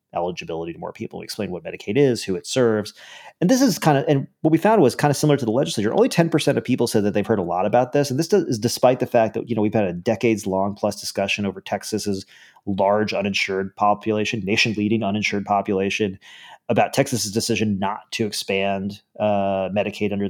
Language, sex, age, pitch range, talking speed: English, male, 30-49, 100-125 Hz, 220 wpm